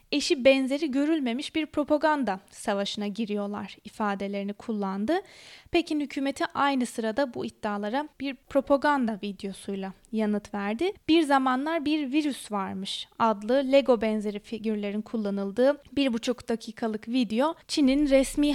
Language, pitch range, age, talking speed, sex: Turkish, 215-290 Hz, 20-39, 115 wpm, female